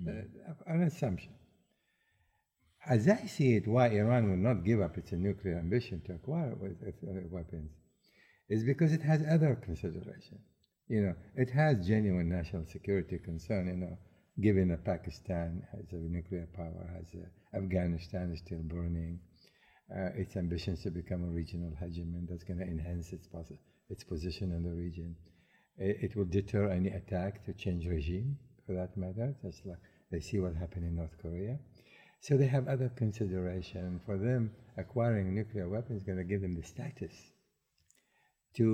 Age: 60-79